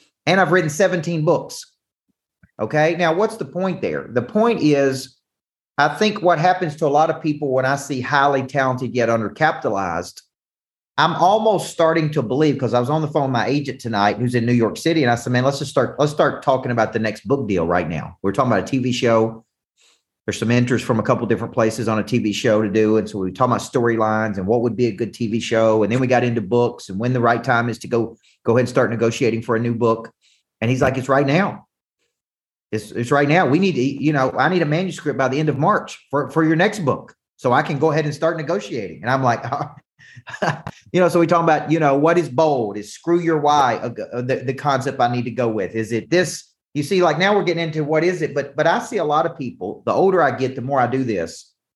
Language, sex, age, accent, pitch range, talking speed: English, male, 40-59, American, 115-160 Hz, 255 wpm